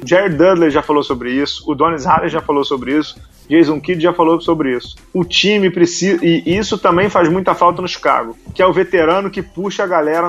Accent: Brazilian